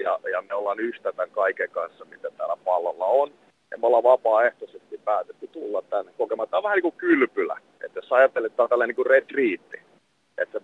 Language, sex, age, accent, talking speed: Finnish, male, 40-59, native, 190 wpm